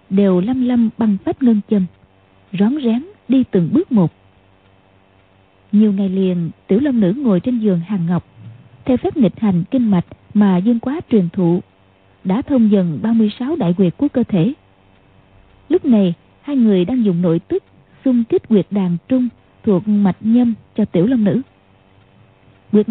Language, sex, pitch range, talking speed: Vietnamese, female, 170-240 Hz, 170 wpm